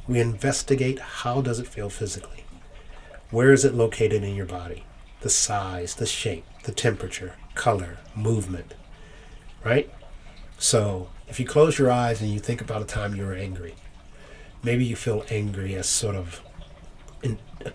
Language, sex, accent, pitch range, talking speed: English, male, American, 100-125 Hz, 155 wpm